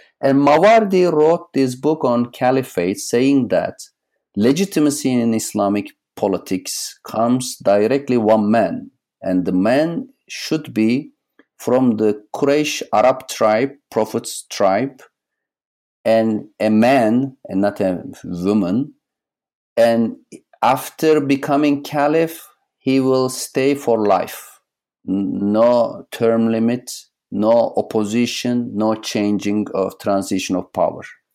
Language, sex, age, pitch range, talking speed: English, male, 50-69, 110-150 Hz, 110 wpm